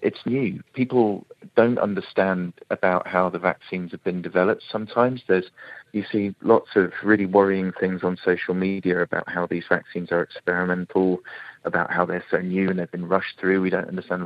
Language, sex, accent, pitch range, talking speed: English, male, British, 90-110 Hz, 180 wpm